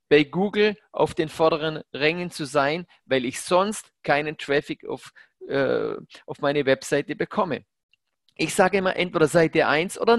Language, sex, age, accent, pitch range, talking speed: German, male, 30-49, German, 155-205 Hz, 145 wpm